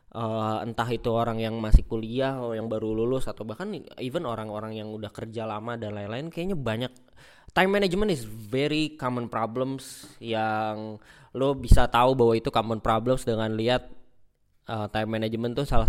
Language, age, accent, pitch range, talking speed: Indonesian, 20-39, native, 110-130 Hz, 160 wpm